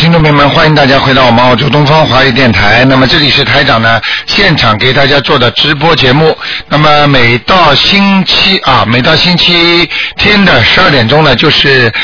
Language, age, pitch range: Chinese, 50-69, 130-165 Hz